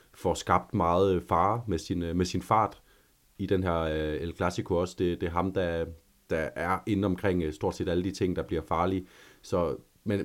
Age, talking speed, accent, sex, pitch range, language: 30-49, 200 wpm, native, male, 85-105 Hz, Danish